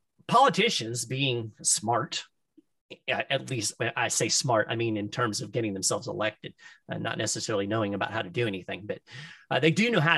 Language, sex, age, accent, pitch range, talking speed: English, male, 40-59, American, 120-165 Hz, 185 wpm